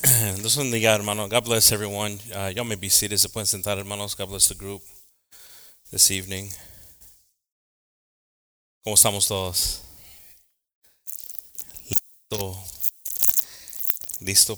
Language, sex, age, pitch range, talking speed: English, male, 30-49, 95-110 Hz, 105 wpm